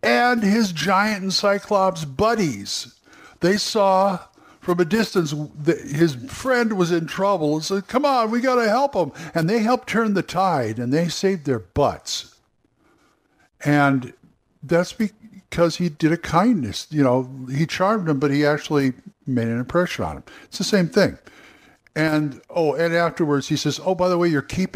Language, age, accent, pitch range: English, 60-79, American, 135-190 Hz